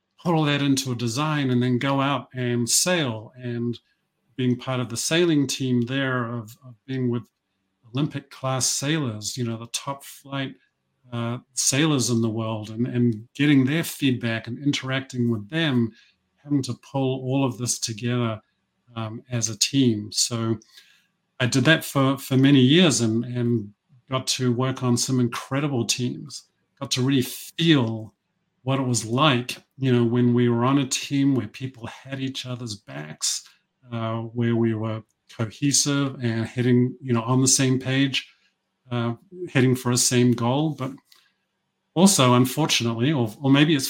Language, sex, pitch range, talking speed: English, male, 120-140 Hz, 165 wpm